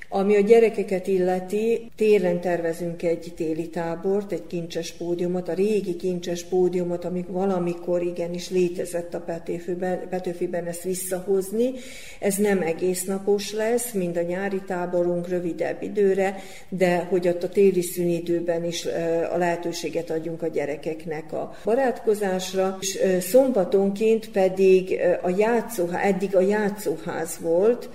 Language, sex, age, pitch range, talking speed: Hungarian, female, 50-69, 170-195 Hz, 125 wpm